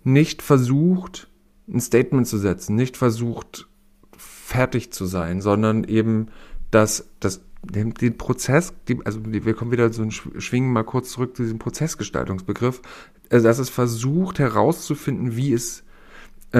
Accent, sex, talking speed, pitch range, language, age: German, male, 130 wpm, 110-130 Hz, German, 40-59